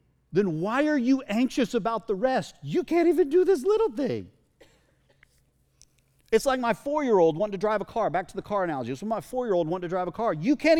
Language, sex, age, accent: English, male, 40-59, American